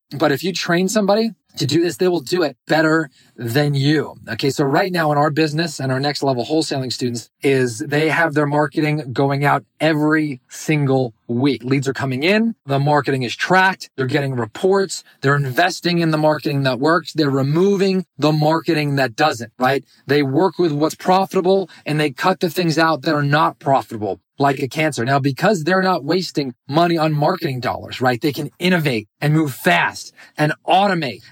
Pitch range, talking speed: 135-165 Hz, 190 wpm